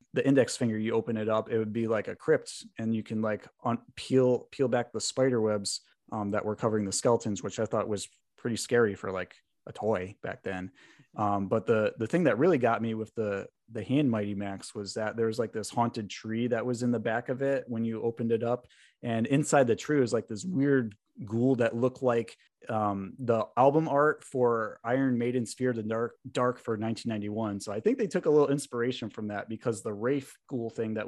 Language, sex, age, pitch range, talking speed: English, male, 30-49, 105-125 Hz, 230 wpm